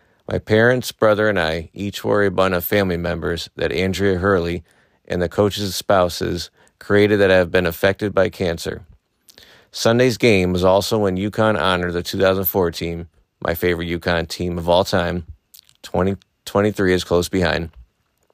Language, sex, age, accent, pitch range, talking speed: English, male, 30-49, American, 85-105 Hz, 155 wpm